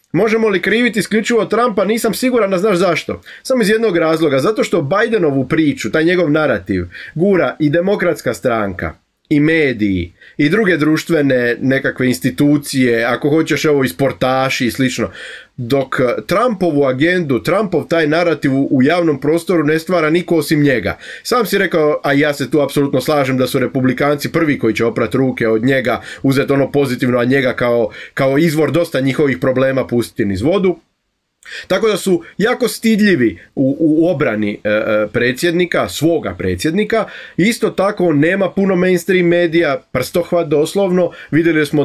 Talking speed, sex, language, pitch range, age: 155 wpm, male, Croatian, 135-180 Hz, 30-49